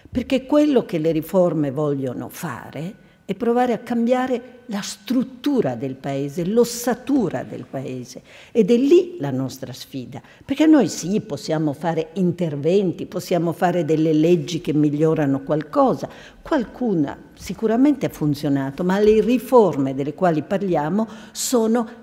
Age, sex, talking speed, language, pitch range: 50-69, female, 130 wpm, Italian, 150-215 Hz